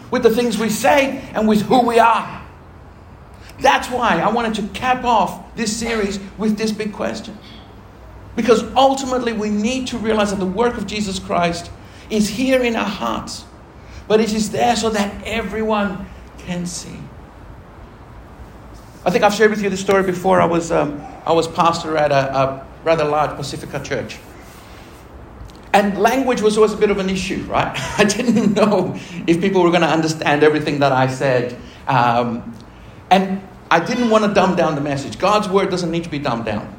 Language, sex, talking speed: English, male, 185 wpm